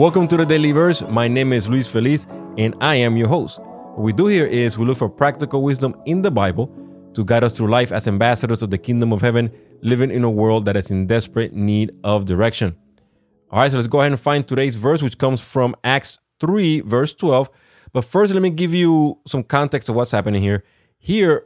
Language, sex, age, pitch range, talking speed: English, male, 30-49, 110-150 Hz, 225 wpm